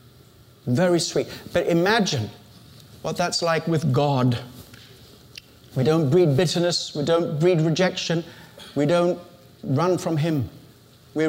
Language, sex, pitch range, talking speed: English, male, 130-185 Hz, 120 wpm